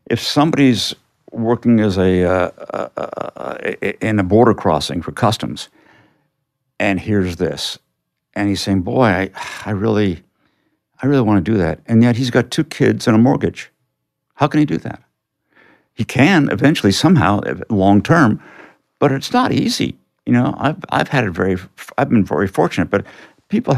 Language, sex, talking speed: English, male, 170 wpm